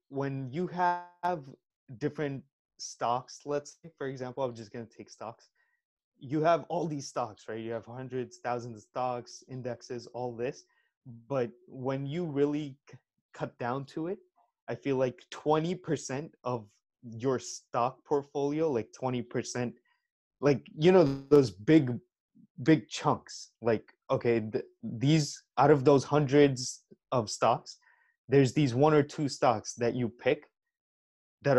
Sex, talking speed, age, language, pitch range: male, 140 wpm, 20-39, English, 120-145 Hz